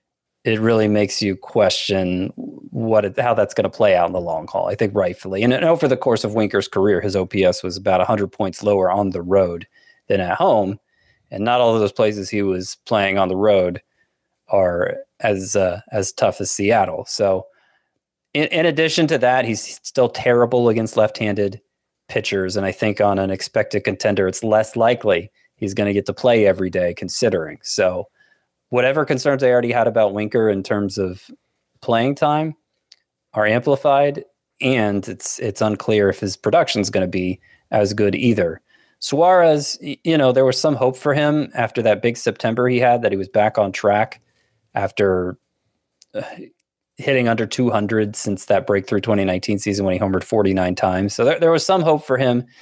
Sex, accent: male, American